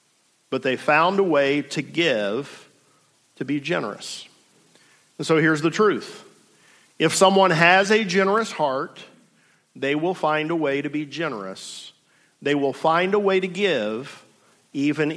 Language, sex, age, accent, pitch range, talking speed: English, male, 50-69, American, 170-220 Hz, 145 wpm